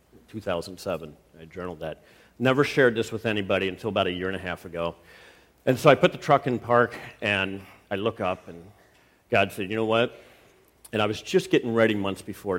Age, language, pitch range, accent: 50-69, English, 90-115 Hz, American